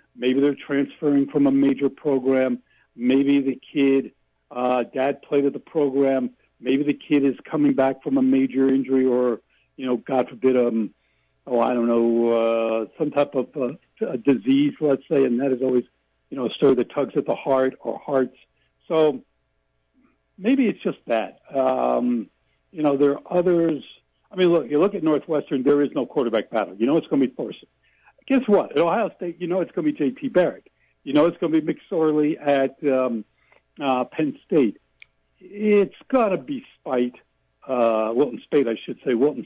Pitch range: 120-150 Hz